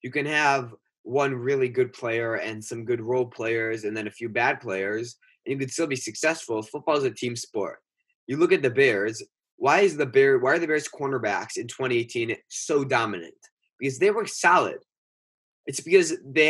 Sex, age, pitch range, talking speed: male, 20-39, 120-160 Hz, 195 wpm